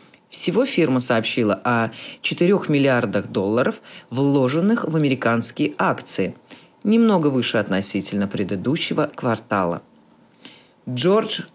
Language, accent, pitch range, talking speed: Russian, native, 125-180 Hz, 90 wpm